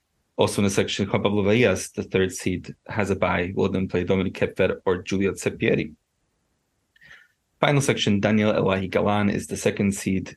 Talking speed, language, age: 155 wpm, English, 20-39